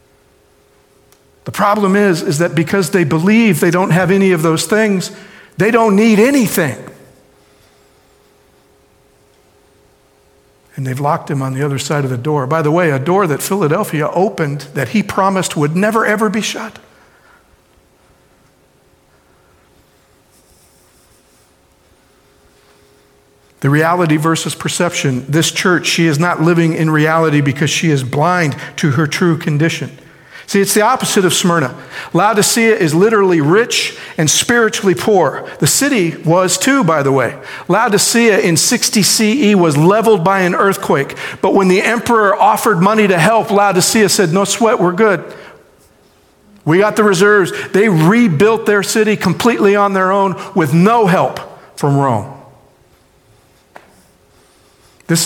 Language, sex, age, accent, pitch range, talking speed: English, male, 50-69, American, 155-205 Hz, 140 wpm